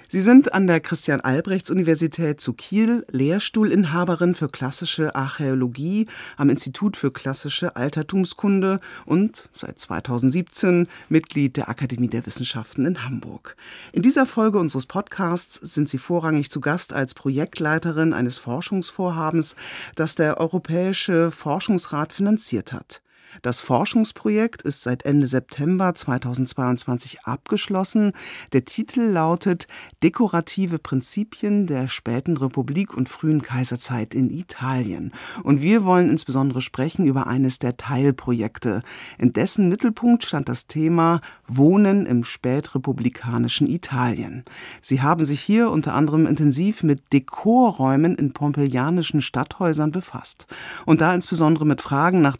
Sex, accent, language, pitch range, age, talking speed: female, German, German, 130-180 Hz, 40-59, 120 wpm